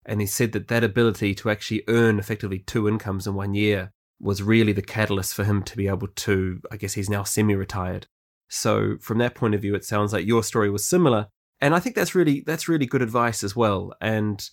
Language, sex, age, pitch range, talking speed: English, male, 20-39, 105-130 Hz, 225 wpm